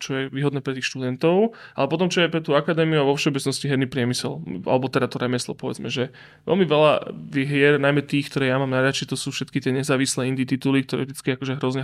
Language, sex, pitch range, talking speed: Slovak, male, 130-145 Hz, 225 wpm